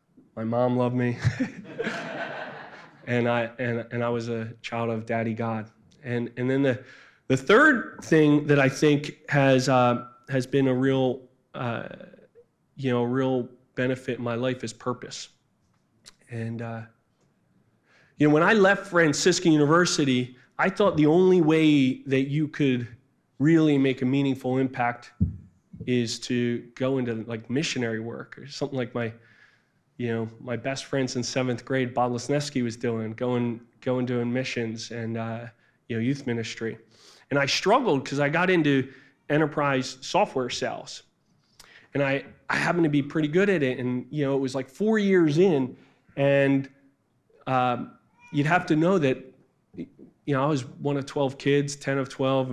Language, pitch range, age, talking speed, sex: English, 120-145 Hz, 20-39, 165 wpm, male